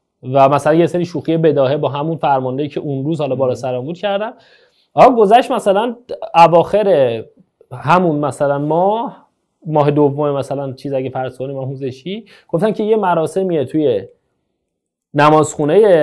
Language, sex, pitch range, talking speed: Persian, male, 140-195 Hz, 140 wpm